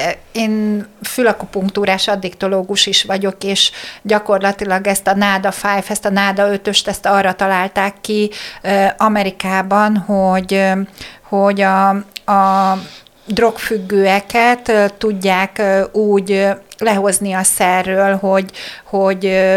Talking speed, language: 105 wpm, Hungarian